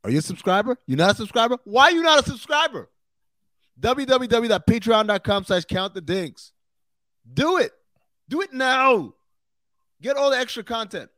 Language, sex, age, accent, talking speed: English, male, 30-49, American, 145 wpm